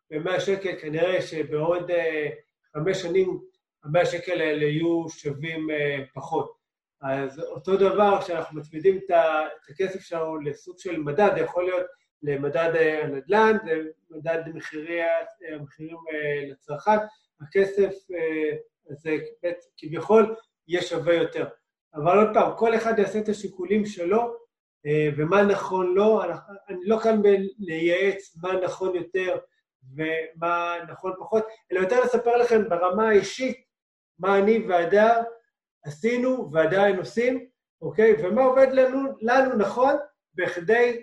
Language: Hebrew